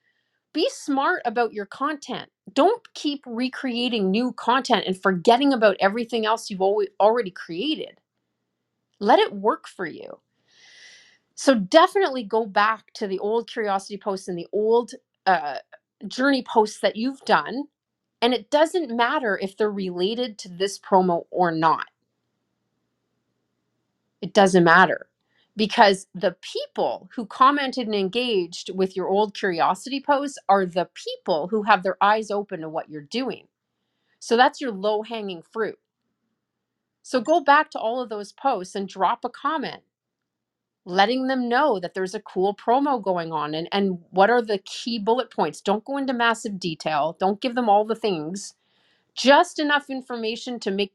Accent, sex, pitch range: American, female, 195-255 Hz